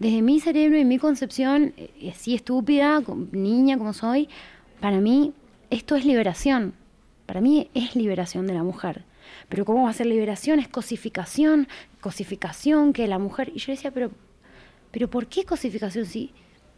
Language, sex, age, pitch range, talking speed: Spanish, female, 20-39, 200-255 Hz, 155 wpm